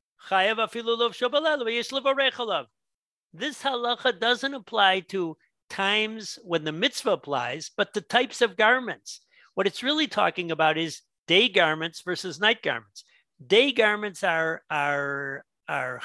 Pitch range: 160-235 Hz